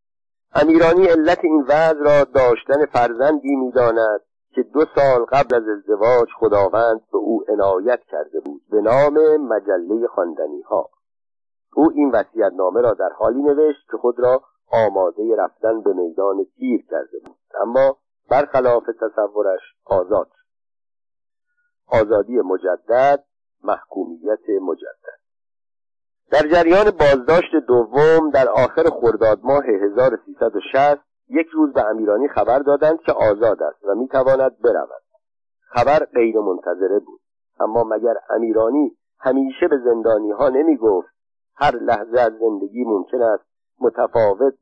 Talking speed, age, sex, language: 125 wpm, 50-69, male, Persian